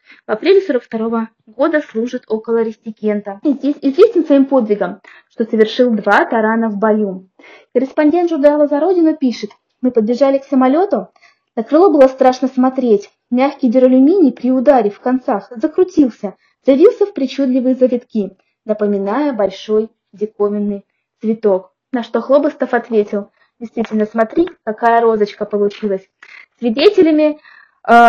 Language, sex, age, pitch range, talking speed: Russian, female, 20-39, 215-265 Hz, 120 wpm